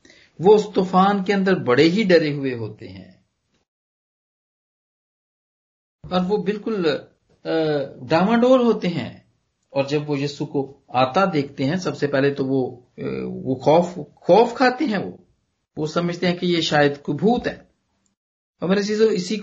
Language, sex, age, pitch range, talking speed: Punjabi, male, 50-69, 115-180 Hz, 140 wpm